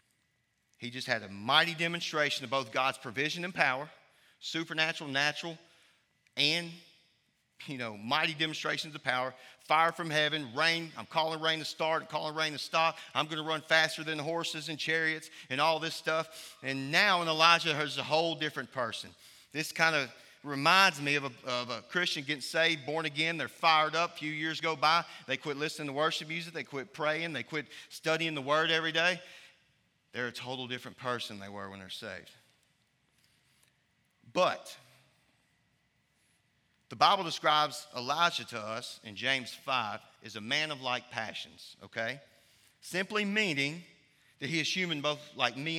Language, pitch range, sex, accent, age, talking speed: English, 135-165 Hz, male, American, 40-59, 170 wpm